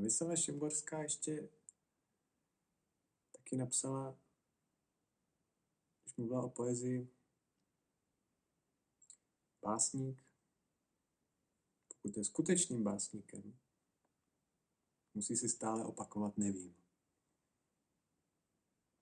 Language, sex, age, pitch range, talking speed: Czech, male, 50-69, 105-120 Hz, 60 wpm